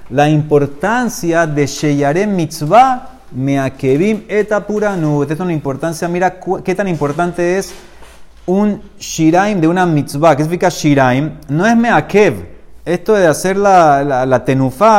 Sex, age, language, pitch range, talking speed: male, 30-49, Spanish, 140-190 Hz, 135 wpm